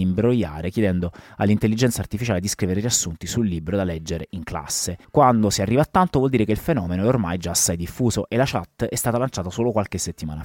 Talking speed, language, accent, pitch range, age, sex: 215 wpm, Italian, native, 95-125 Hz, 30-49, male